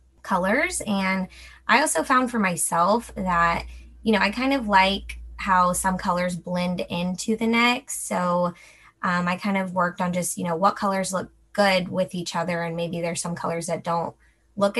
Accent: American